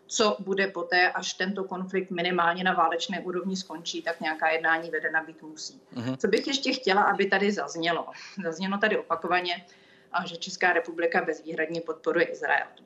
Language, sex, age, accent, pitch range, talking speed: Czech, female, 30-49, native, 165-190 Hz, 155 wpm